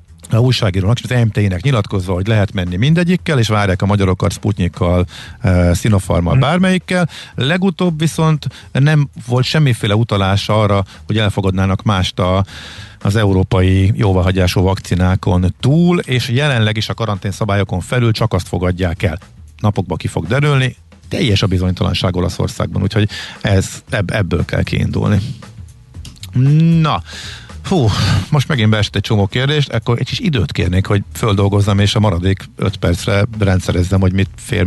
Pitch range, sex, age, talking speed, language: 95-115 Hz, male, 50-69, 140 wpm, Hungarian